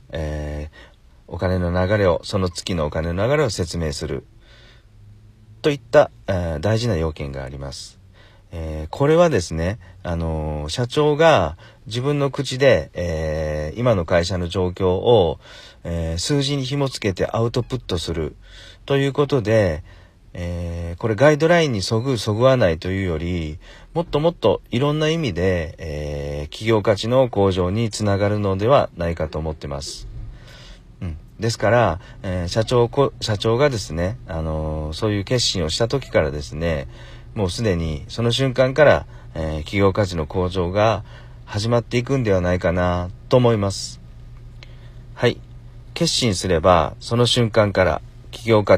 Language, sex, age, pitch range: Japanese, male, 40-59, 85-120 Hz